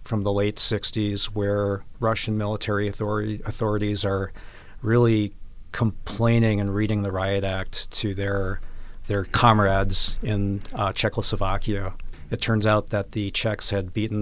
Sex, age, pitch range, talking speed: male, 40-59, 100-110 Hz, 130 wpm